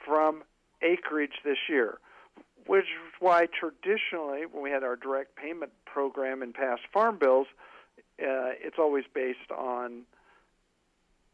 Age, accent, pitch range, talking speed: 50-69, American, 125-160 Hz, 130 wpm